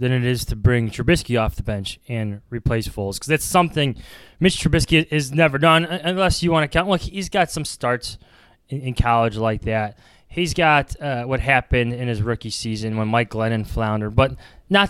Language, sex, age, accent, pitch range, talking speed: English, male, 20-39, American, 115-155 Hz, 195 wpm